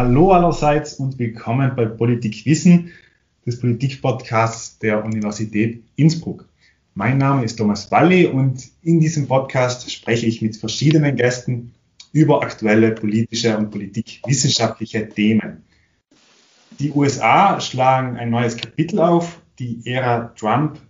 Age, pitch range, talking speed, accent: 30-49, 115-145 Hz, 120 wpm, German